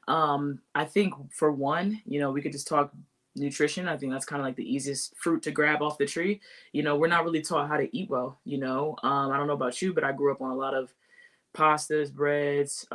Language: English